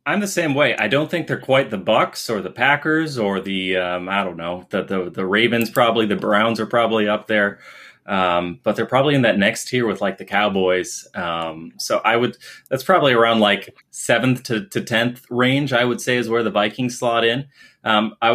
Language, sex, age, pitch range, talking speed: English, male, 30-49, 105-125 Hz, 220 wpm